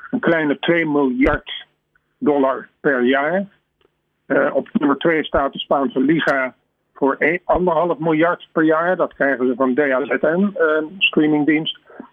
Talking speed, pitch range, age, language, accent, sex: 140 wpm, 135-165 Hz, 50-69, Dutch, Dutch, male